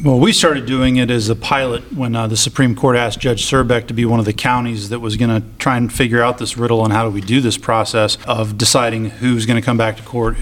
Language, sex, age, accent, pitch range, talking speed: English, male, 30-49, American, 110-125 Hz, 275 wpm